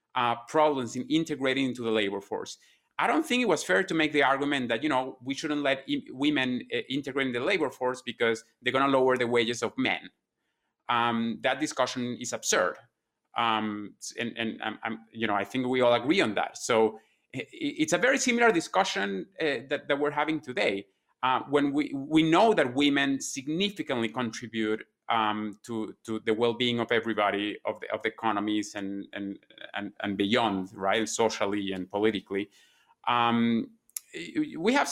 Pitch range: 115-155 Hz